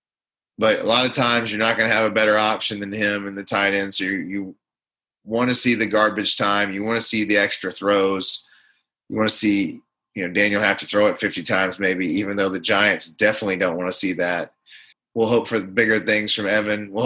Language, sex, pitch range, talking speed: English, male, 100-125 Hz, 235 wpm